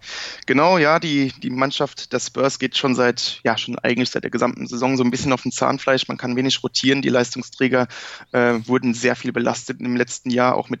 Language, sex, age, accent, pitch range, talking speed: German, male, 20-39, German, 125-135 Hz, 215 wpm